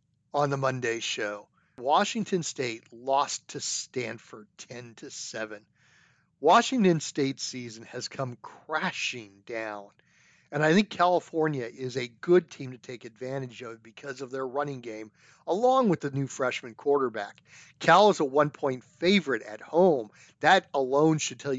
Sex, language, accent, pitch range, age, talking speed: male, English, American, 125-160 Hz, 50-69, 140 wpm